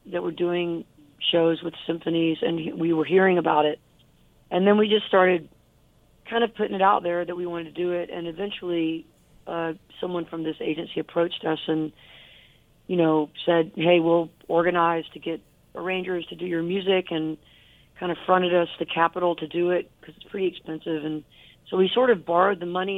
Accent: American